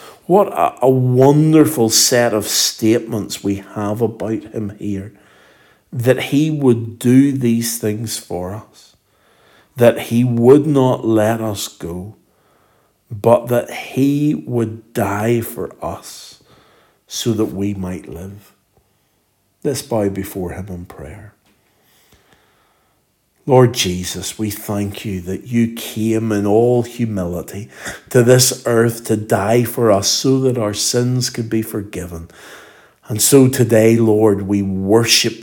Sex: male